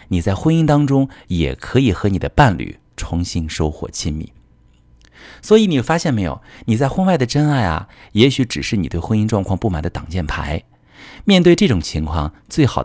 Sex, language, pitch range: male, Chinese, 85-120 Hz